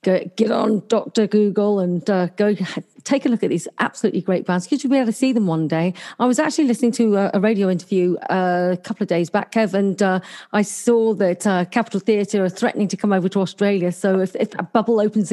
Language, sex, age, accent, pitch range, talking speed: English, female, 40-59, British, 190-235 Hz, 245 wpm